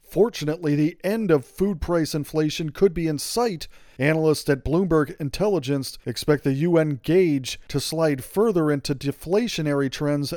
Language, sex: English, male